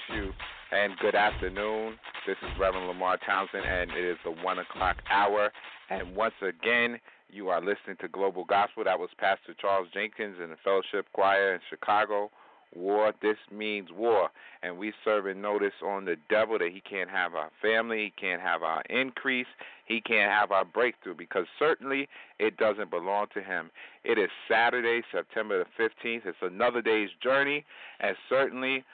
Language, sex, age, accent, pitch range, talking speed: English, male, 40-59, American, 105-130 Hz, 170 wpm